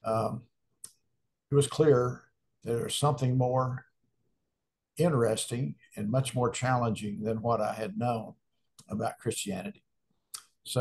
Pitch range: 115-135 Hz